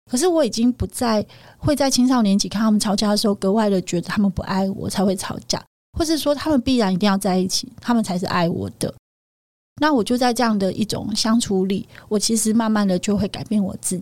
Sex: female